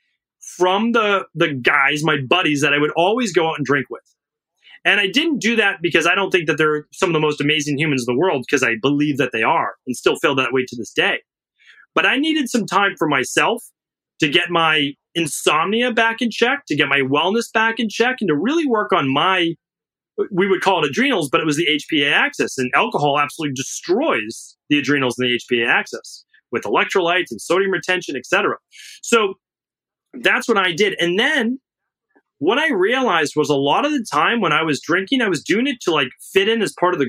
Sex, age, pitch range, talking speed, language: male, 30-49, 150-225 Hz, 220 wpm, English